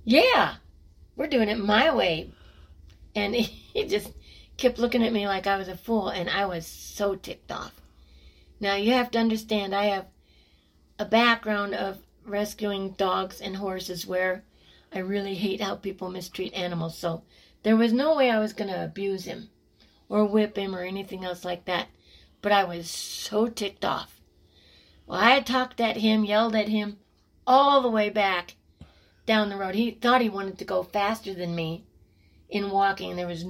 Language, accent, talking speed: English, American, 175 wpm